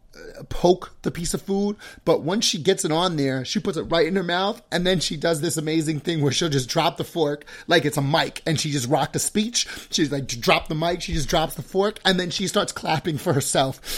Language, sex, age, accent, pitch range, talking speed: English, male, 30-49, American, 140-165 Hz, 255 wpm